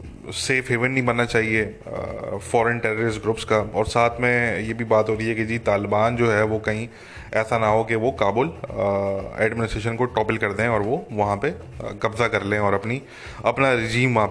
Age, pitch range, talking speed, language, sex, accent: 20-39, 110-135 Hz, 200 wpm, English, male, Indian